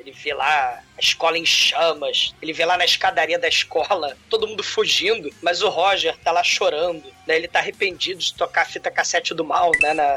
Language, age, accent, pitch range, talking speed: Portuguese, 20-39, Brazilian, 165-265 Hz, 210 wpm